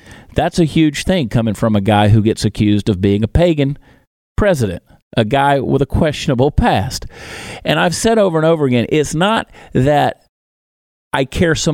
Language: English